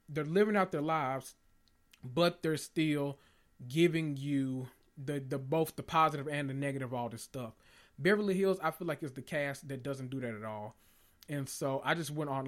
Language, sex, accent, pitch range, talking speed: English, male, American, 125-165 Hz, 195 wpm